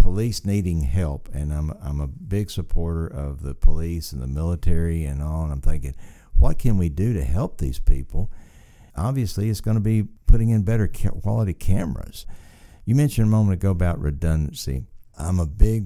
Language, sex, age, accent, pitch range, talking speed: English, male, 60-79, American, 75-90 Hz, 180 wpm